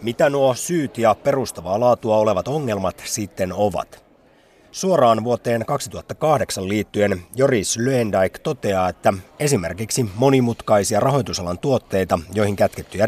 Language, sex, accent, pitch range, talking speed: Finnish, male, native, 95-135 Hz, 110 wpm